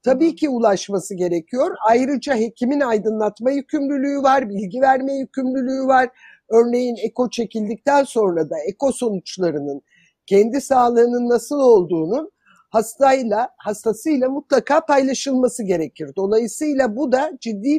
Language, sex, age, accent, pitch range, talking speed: Turkish, male, 50-69, native, 215-275 Hz, 110 wpm